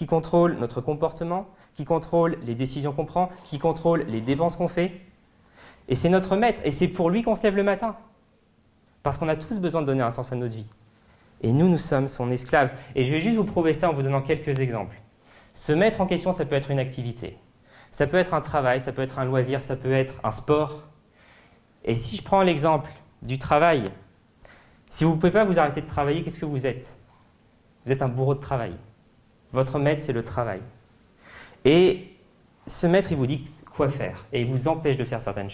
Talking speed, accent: 220 wpm, French